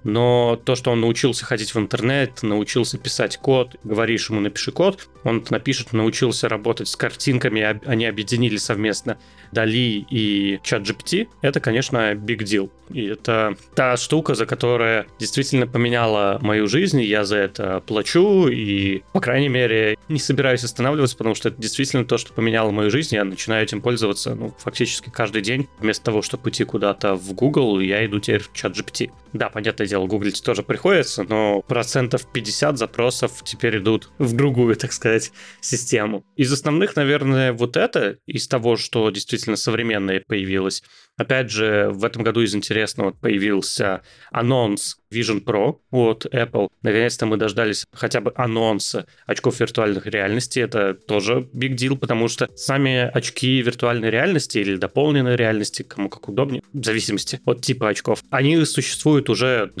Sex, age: male, 30-49